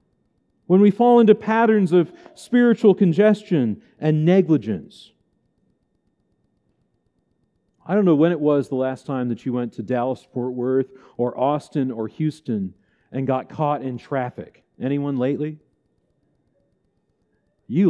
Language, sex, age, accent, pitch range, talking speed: English, male, 40-59, American, 130-205 Hz, 125 wpm